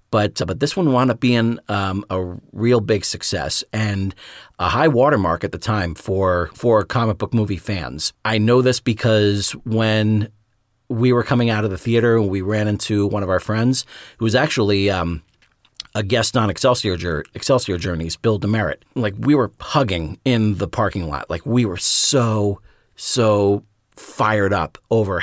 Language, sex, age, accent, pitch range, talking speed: English, male, 40-59, American, 100-115 Hz, 170 wpm